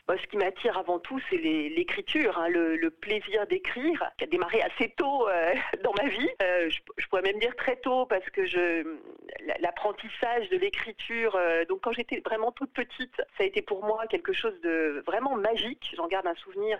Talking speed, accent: 205 wpm, French